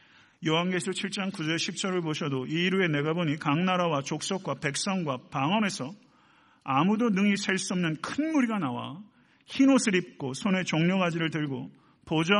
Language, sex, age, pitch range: Korean, male, 40-59, 150-195 Hz